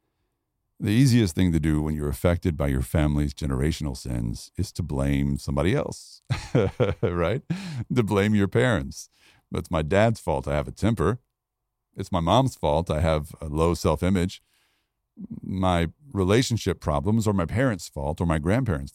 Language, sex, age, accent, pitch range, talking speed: English, male, 50-69, American, 80-115 Hz, 160 wpm